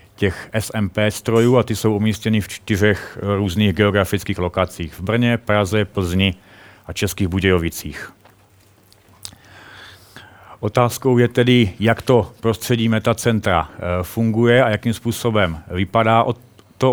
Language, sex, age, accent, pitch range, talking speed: Czech, male, 40-59, native, 100-115 Hz, 115 wpm